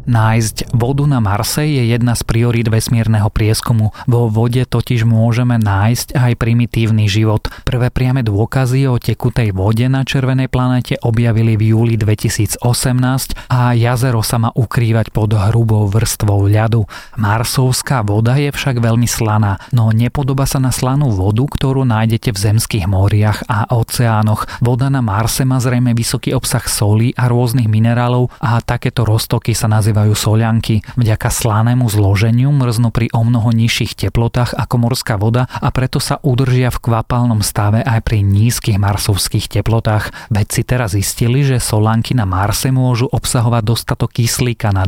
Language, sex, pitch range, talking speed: Slovak, male, 110-125 Hz, 150 wpm